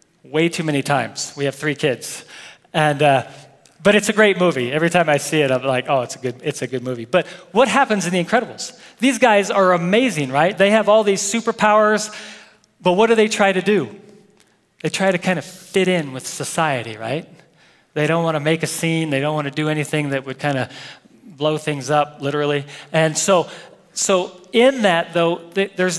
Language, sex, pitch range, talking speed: English, male, 150-200 Hz, 210 wpm